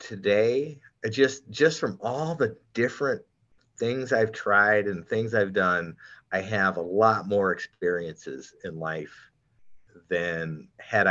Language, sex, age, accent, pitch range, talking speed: English, male, 30-49, American, 90-125 Hz, 130 wpm